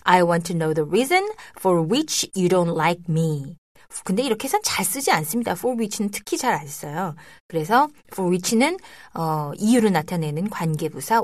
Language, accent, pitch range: Korean, native, 170-255 Hz